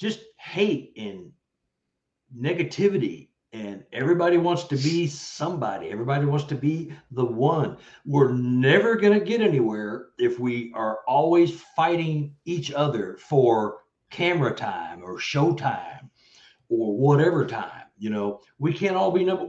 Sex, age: male, 60-79